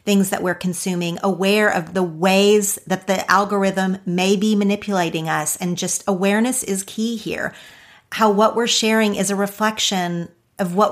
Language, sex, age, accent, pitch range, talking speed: English, female, 40-59, American, 170-205 Hz, 165 wpm